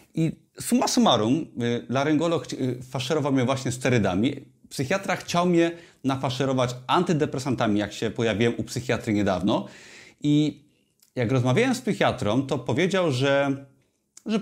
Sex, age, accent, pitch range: male, 30-49, native, 120-155 Hz